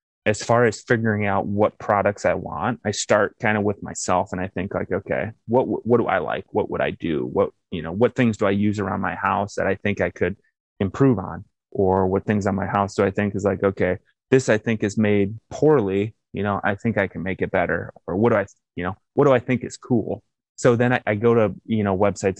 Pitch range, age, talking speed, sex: 100-110 Hz, 20-39, 255 wpm, male